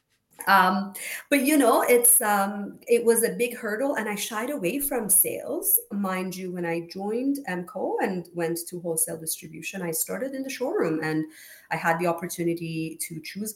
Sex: female